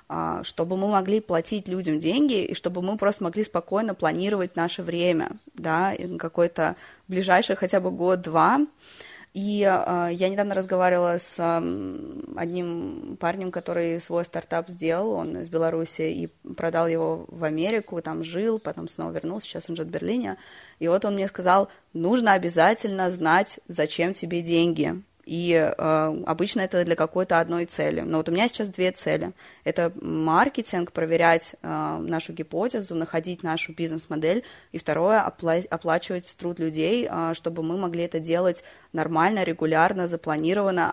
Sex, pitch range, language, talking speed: female, 165-190 Hz, Russian, 145 wpm